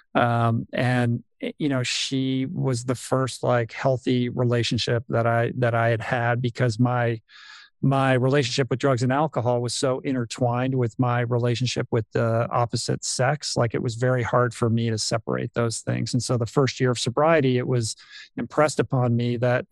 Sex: male